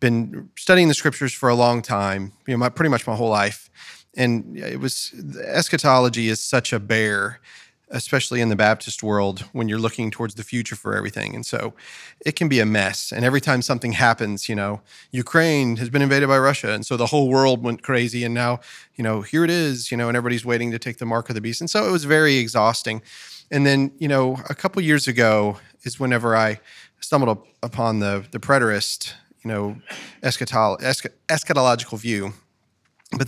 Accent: American